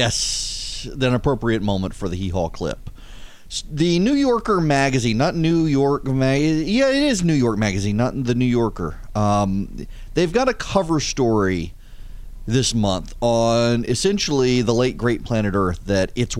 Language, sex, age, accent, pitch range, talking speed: English, male, 30-49, American, 100-170 Hz, 160 wpm